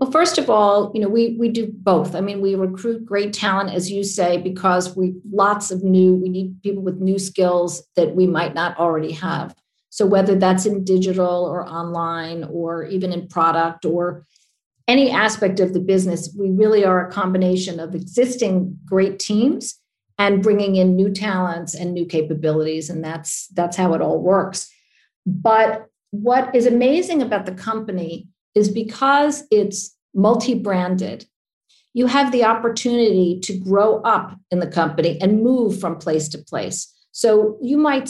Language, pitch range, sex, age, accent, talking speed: English, 185-225 Hz, female, 50-69, American, 170 wpm